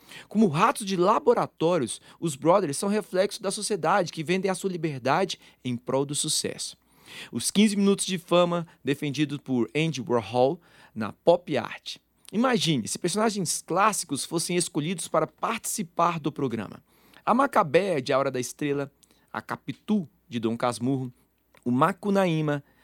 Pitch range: 125-185 Hz